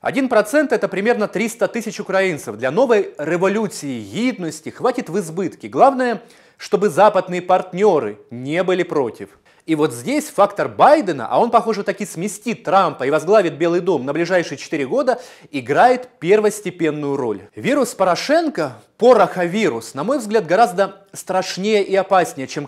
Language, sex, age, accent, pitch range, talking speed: Russian, male, 30-49, native, 160-220 Hz, 150 wpm